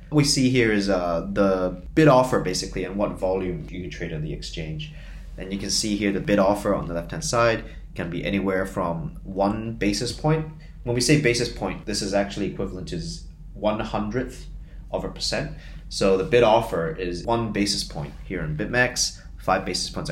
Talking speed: 195 wpm